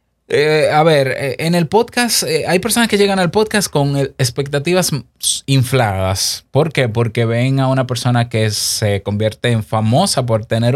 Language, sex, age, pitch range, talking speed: Spanish, male, 20-39, 110-150 Hz, 165 wpm